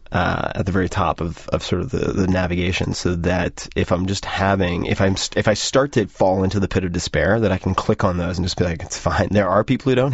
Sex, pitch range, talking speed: male, 85-105 Hz, 270 wpm